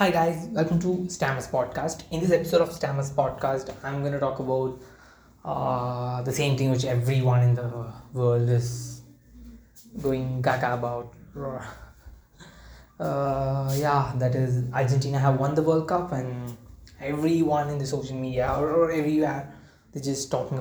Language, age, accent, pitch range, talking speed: English, 20-39, Indian, 125-155 Hz, 145 wpm